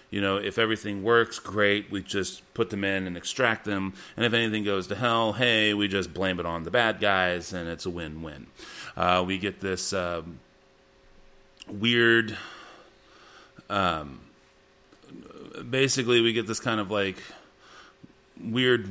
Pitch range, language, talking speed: 85-110 Hz, English, 150 wpm